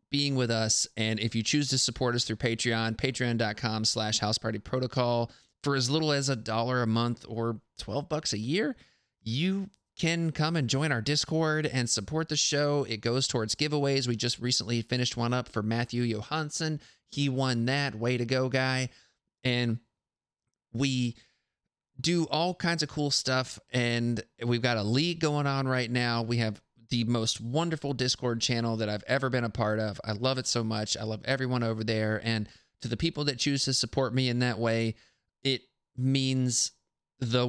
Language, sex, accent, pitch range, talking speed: English, male, American, 115-135 Hz, 185 wpm